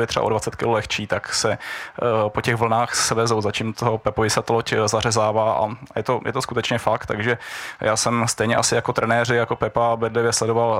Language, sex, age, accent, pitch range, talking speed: Czech, male, 20-39, native, 115-120 Hz, 205 wpm